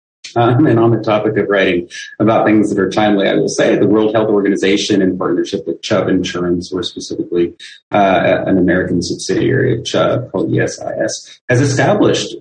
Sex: male